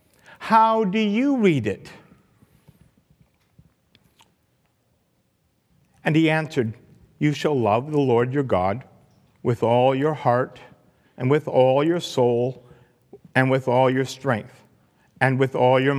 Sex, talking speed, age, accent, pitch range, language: male, 125 wpm, 50-69, American, 125-190 Hz, English